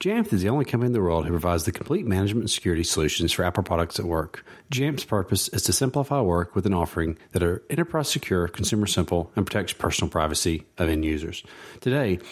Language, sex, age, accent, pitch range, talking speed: English, male, 40-59, American, 85-115 Hz, 200 wpm